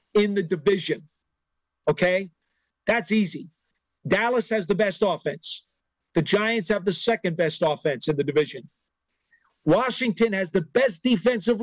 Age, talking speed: 50-69, 135 wpm